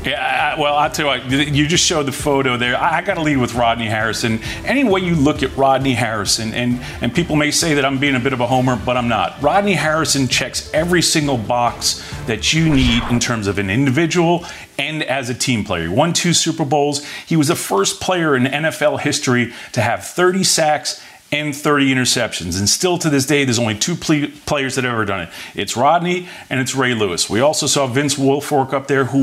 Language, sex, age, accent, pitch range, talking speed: English, male, 40-59, American, 120-150 Hz, 225 wpm